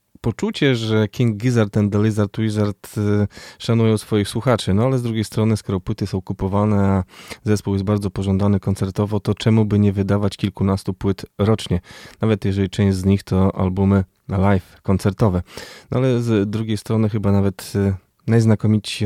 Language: Polish